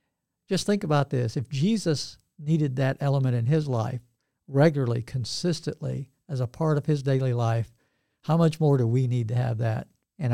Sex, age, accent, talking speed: male, 60-79, American, 180 wpm